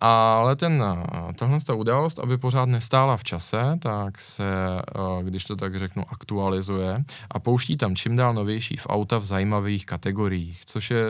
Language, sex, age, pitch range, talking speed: Czech, male, 20-39, 100-125 Hz, 150 wpm